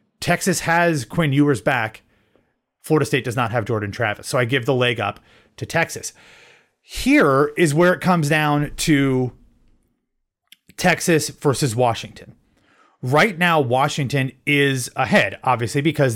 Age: 30-49